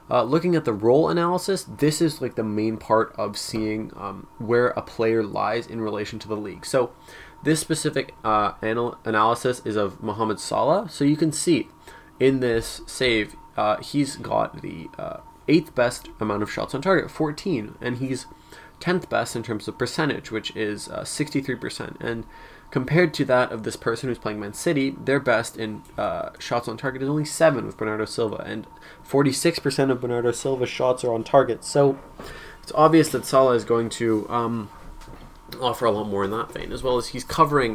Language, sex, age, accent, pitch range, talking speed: English, male, 20-39, American, 110-145 Hz, 190 wpm